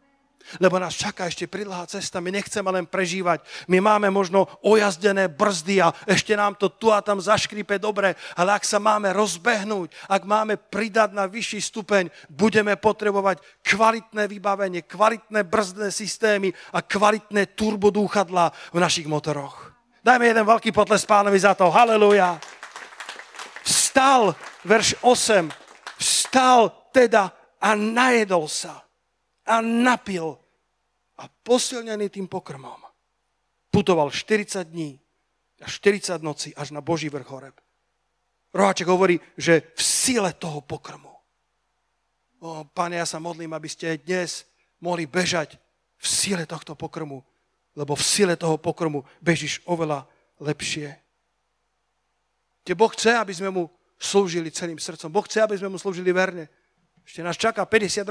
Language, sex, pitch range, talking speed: Slovak, male, 170-210 Hz, 135 wpm